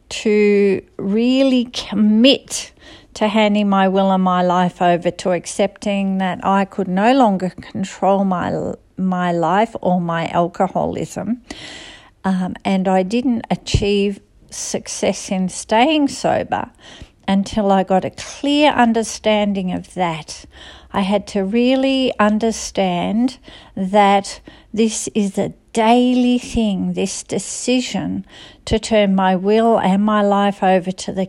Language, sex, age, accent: English, female, 50-69, Australian